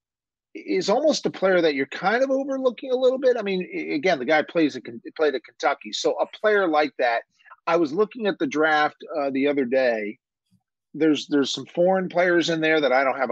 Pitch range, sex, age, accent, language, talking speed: 140-205 Hz, male, 40-59, American, English, 215 wpm